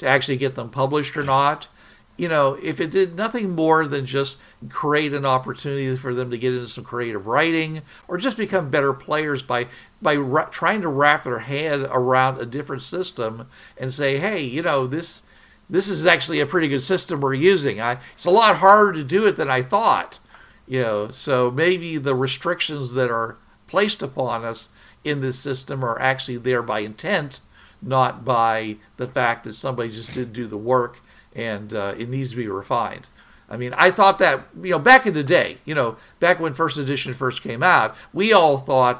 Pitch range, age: 120-150 Hz, 50-69